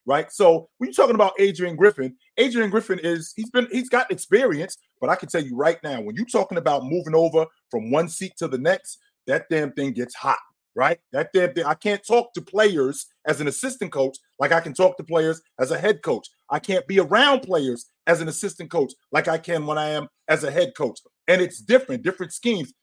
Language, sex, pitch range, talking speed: English, male, 165-235 Hz, 230 wpm